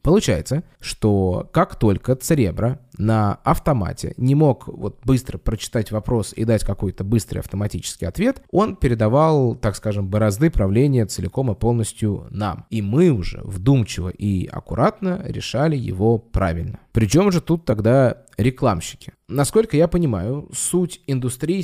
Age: 20-39